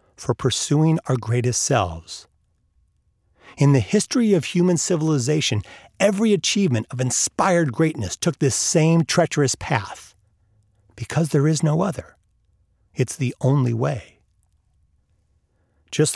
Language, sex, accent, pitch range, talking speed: English, male, American, 100-160 Hz, 115 wpm